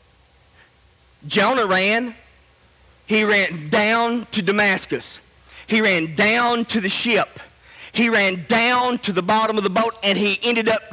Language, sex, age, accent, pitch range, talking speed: English, male, 40-59, American, 180-240 Hz, 145 wpm